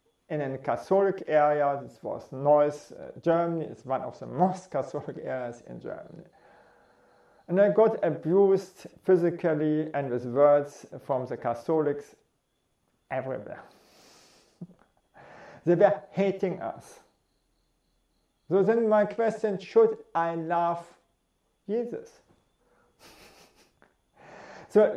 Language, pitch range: English, 150-195 Hz